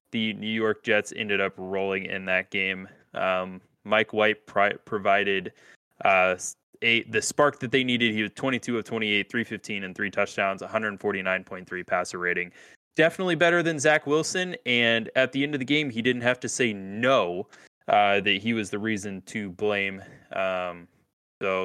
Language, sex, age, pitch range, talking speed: English, male, 20-39, 100-125 Hz, 170 wpm